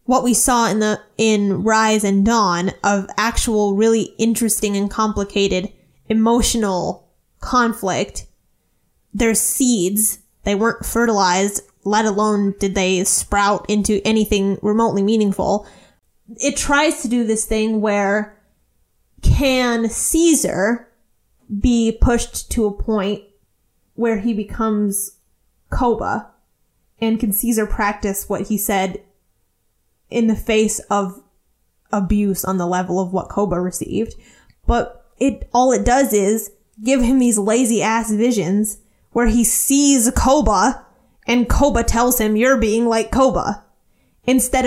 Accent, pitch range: American, 205-240 Hz